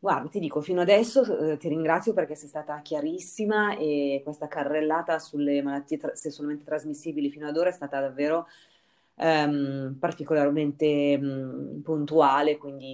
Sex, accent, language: female, native, Italian